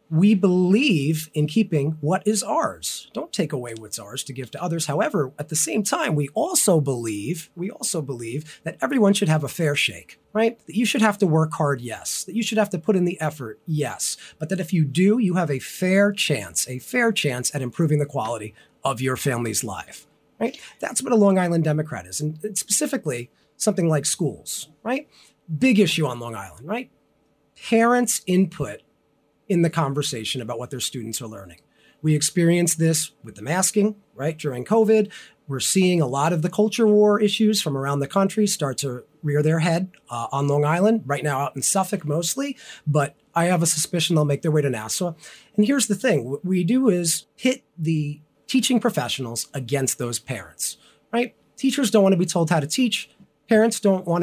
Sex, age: male, 30-49